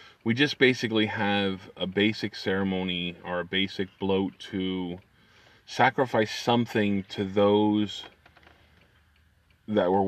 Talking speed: 105 wpm